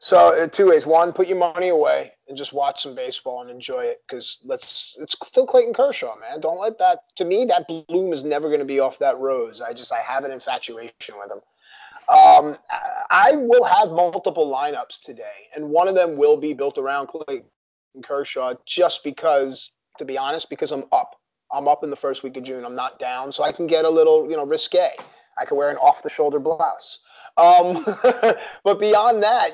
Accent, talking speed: American, 210 wpm